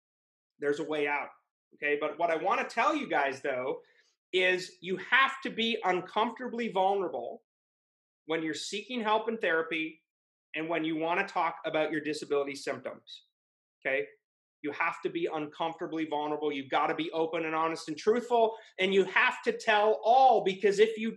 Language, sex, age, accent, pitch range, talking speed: English, male, 30-49, American, 165-245 Hz, 175 wpm